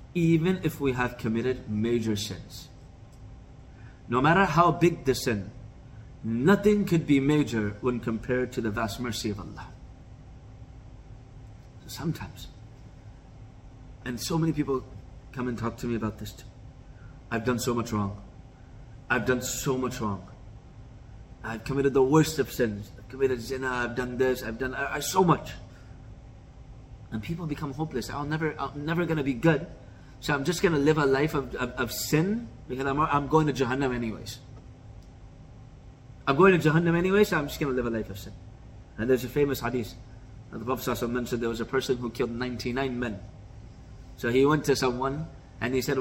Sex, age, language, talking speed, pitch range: male, 30-49, English, 175 wpm, 115-140 Hz